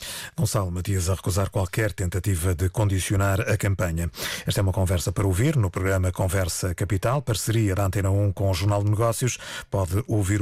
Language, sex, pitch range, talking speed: Portuguese, male, 100-120 Hz, 180 wpm